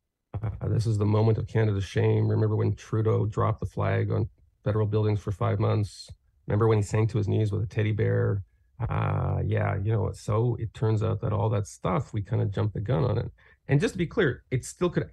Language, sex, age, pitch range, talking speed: English, male, 30-49, 105-125 Hz, 235 wpm